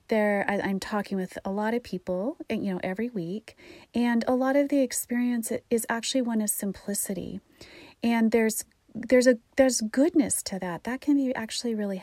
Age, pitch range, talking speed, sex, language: 30-49, 195-245 Hz, 185 wpm, female, English